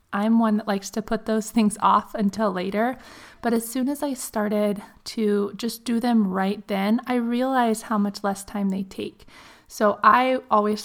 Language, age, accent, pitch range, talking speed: English, 20-39, American, 200-230 Hz, 190 wpm